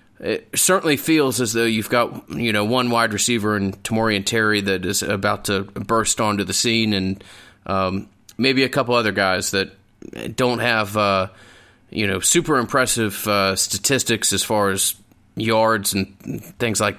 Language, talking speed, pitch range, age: English, 170 wpm, 100-115 Hz, 30-49